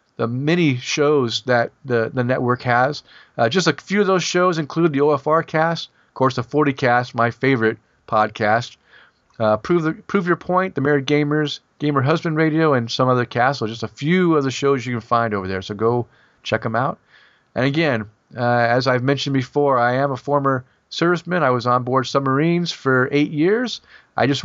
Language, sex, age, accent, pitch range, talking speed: English, male, 40-59, American, 120-165 Hz, 200 wpm